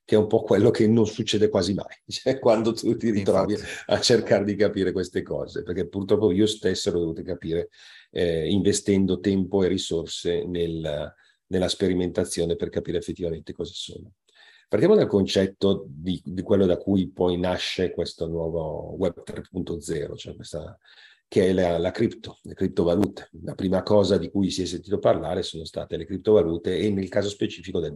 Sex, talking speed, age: male, 170 wpm, 40-59